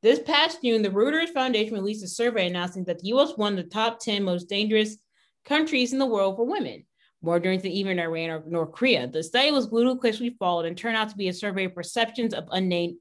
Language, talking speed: English, 230 wpm